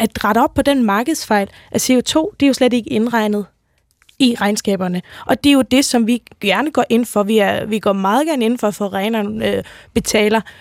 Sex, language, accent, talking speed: female, Danish, native, 225 wpm